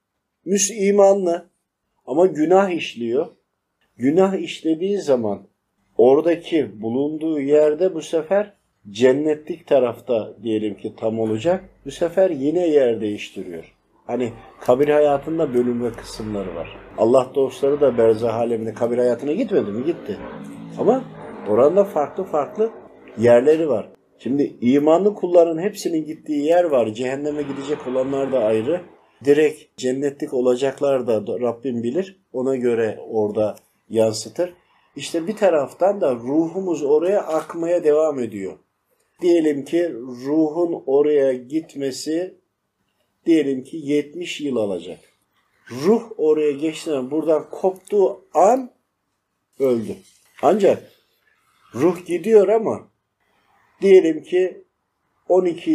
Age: 50-69